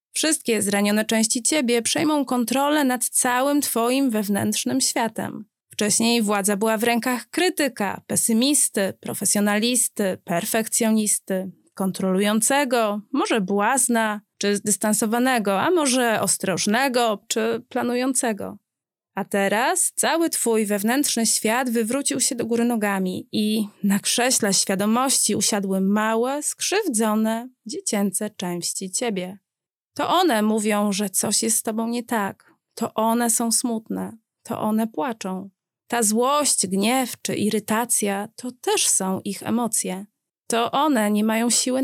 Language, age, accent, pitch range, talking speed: Polish, 20-39, native, 205-255 Hz, 120 wpm